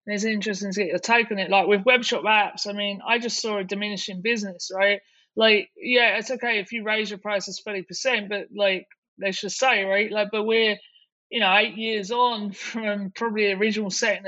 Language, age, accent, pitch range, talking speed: English, 30-49, British, 200-235 Hz, 215 wpm